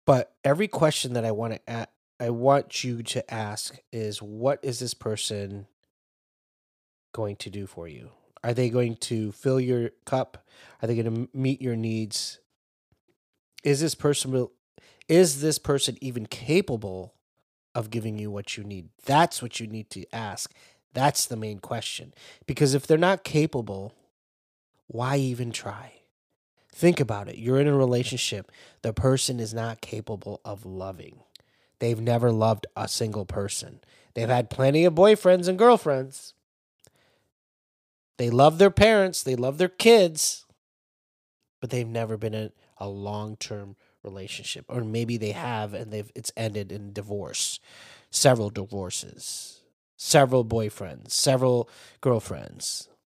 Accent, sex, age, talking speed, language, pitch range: American, male, 30-49, 145 wpm, English, 105-135 Hz